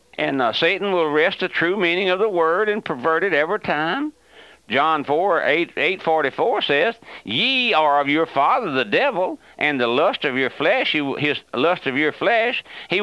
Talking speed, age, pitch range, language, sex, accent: 180 wpm, 60-79, 140-185 Hz, English, male, American